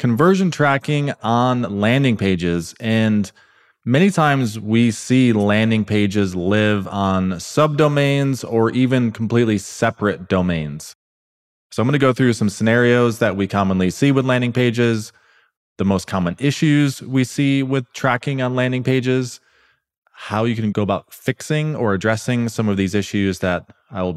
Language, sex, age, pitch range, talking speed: English, male, 20-39, 95-130 Hz, 150 wpm